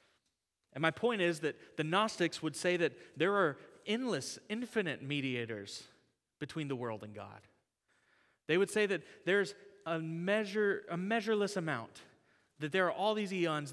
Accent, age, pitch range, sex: American, 30-49, 130-190 Hz, male